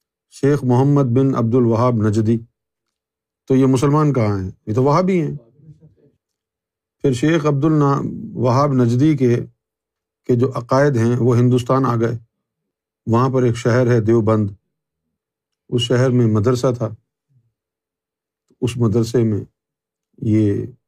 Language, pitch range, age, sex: Urdu, 110-145 Hz, 50-69, male